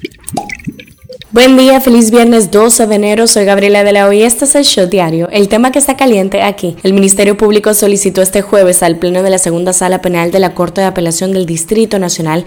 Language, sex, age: Spanish, female, 10-29